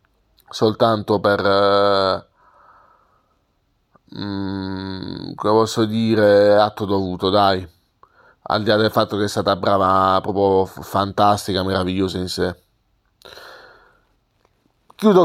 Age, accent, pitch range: 30-49, native, 100-125 Hz